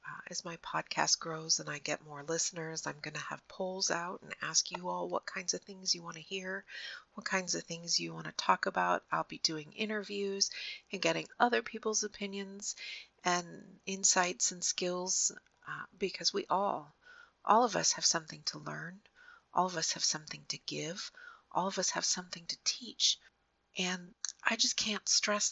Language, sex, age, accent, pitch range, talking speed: English, female, 40-59, American, 160-200 Hz, 185 wpm